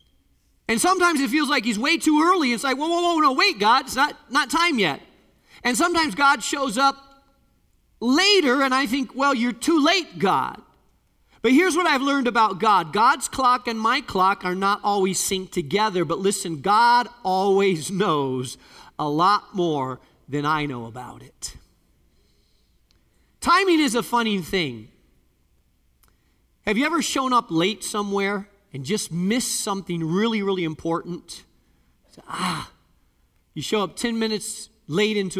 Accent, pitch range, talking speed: American, 170-260 Hz, 160 wpm